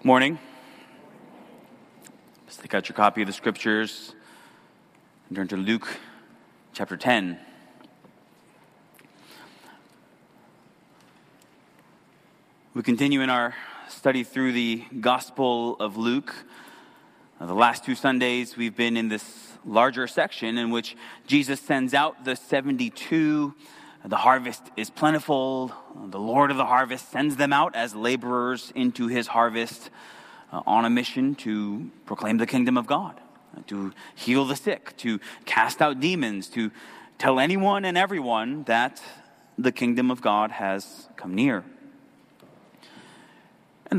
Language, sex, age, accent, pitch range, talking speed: English, male, 30-49, American, 115-155 Hz, 125 wpm